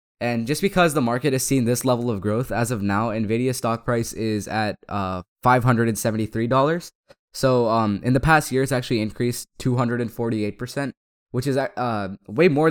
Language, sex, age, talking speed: English, male, 20-39, 170 wpm